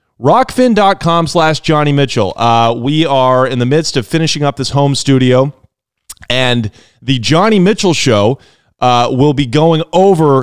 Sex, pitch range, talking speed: male, 120-160 Hz, 145 wpm